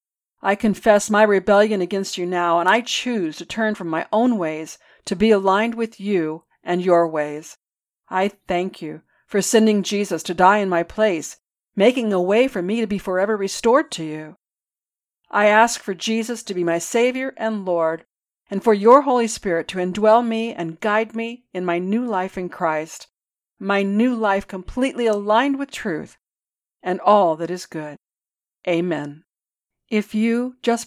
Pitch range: 170-220 Hz